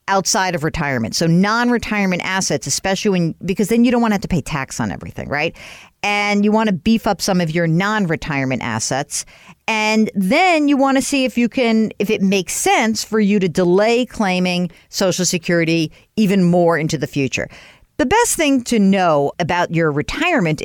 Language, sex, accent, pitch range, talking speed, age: English, female, American, 165-220 Hz, 190 wpm, 50-69